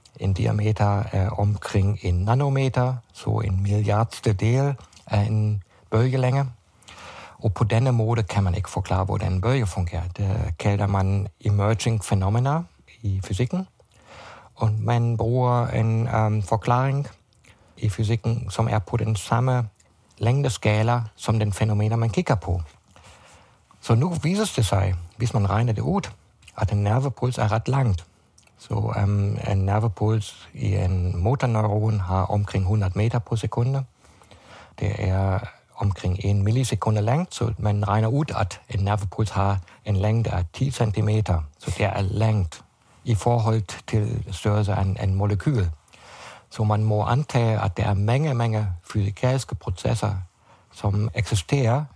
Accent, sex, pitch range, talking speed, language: German, male, 100-115 Hz, 145 wpm, Danish